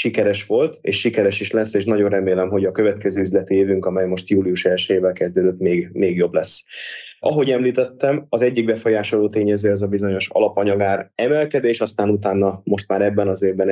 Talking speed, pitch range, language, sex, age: 185 wpm, 95-110 Hz, Hungarian, male, 20-39